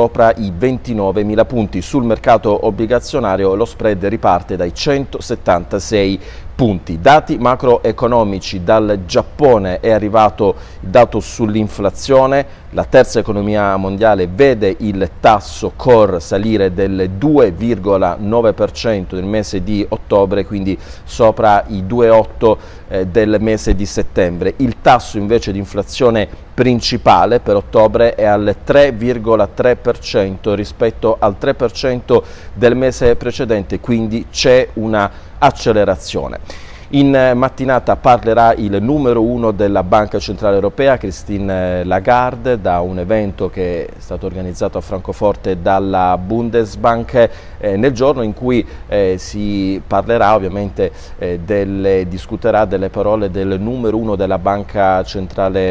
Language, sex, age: Italian, male, 40-59